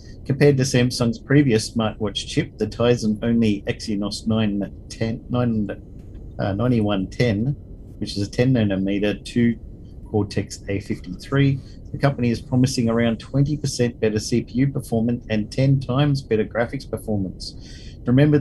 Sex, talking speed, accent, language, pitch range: male, 115 wpm, Australian, English, 100-120 Hz